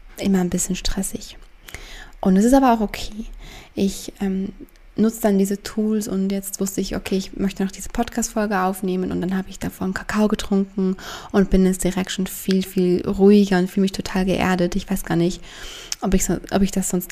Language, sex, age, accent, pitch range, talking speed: German, female, 20-39, German, 185-215 Hz, 195 wpm